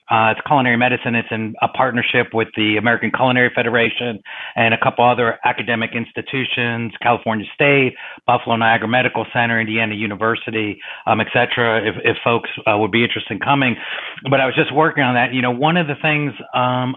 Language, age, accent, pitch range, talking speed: English, 40-59, American, 115-130 Hz, 185 wpm